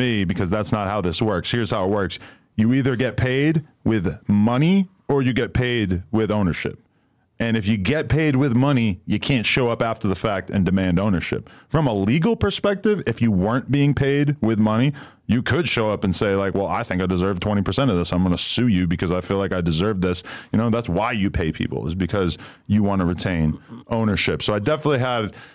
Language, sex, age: English, male, 20-39